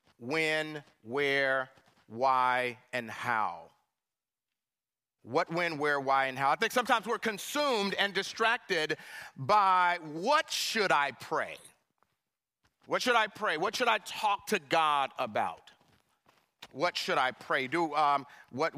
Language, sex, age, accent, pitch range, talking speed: English, male, 40-59, American, 145-225 Hz, 130 wpm